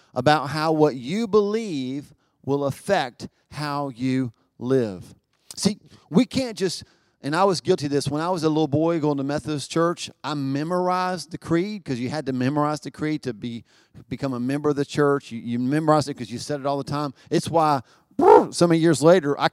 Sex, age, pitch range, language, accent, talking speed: male, 40-59, 135-175 Hz, English, American, 205 wpm